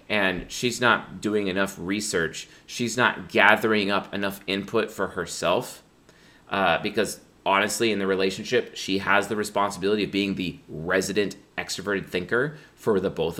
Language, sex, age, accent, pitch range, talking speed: English, male, 30-49, American, 95-115 Hz, 150 wpm